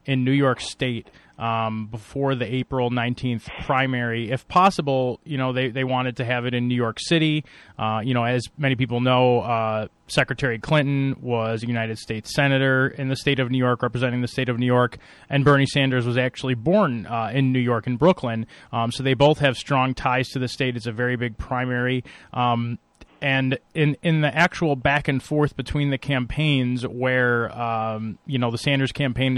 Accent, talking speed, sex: American, 200 wpm, male